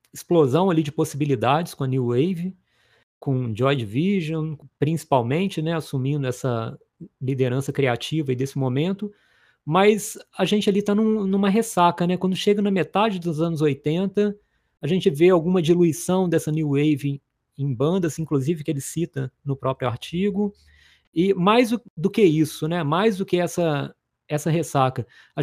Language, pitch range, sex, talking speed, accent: Portuguese, 135-185 Hz, male, 160 wpm, Brazilian